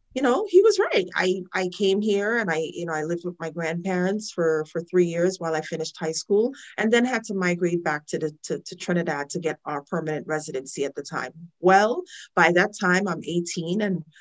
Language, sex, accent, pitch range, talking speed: English, female, American, 160-195 Hz, 225 wpm